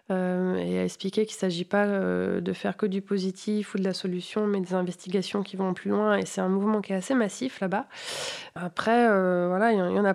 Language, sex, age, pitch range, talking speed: French, female, 20-39, 185-215 Hz, 250 wpm